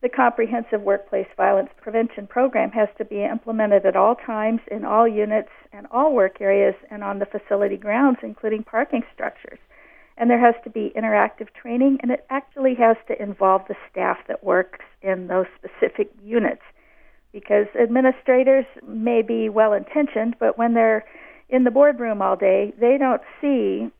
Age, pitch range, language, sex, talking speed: 50-69, 205-250 Hz, English, female, 165 wpm